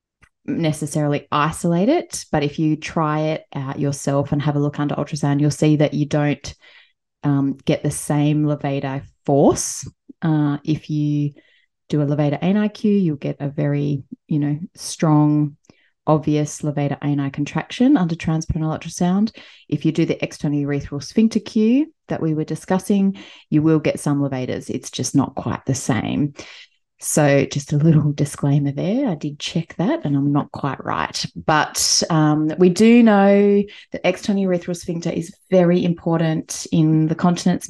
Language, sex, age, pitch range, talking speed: English, female, 20-39, 145-175 Hz, 160 wpm